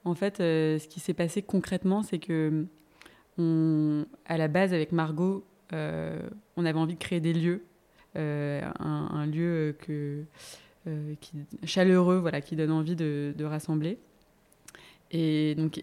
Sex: female